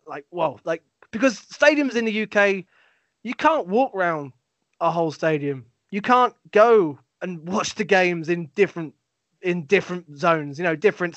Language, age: English, 20-39